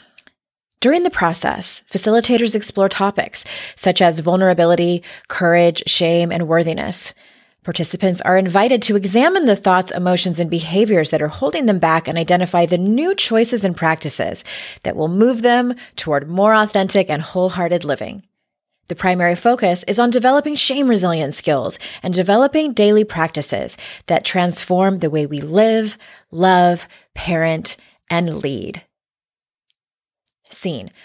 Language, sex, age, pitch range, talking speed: English, female, 20-39, 175-230 Hz, 135 wpm